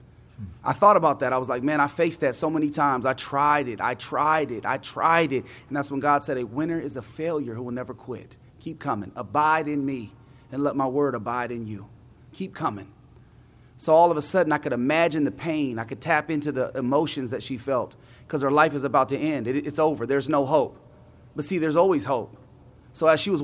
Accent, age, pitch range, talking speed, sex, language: American, 30-49, 125-160 Hz, 235 wpm, male, English